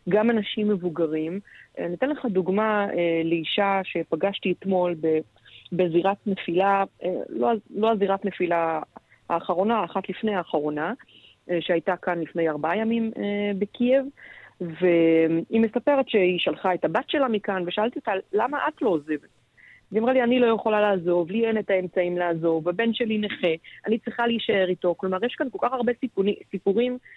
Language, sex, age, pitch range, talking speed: Hebrew, female, 20-39, 175-220 Hz, 155 wpm